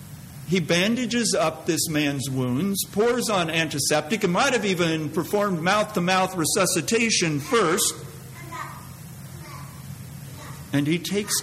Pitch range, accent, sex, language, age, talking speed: 140-195 Hz, American, male, English, 50-69, 105 wpm